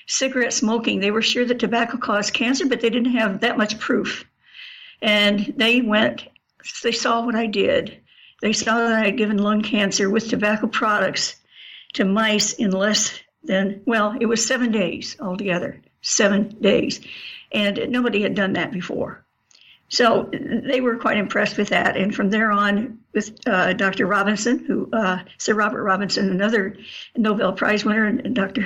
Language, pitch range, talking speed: English, 205-235 Hz, 165 wpm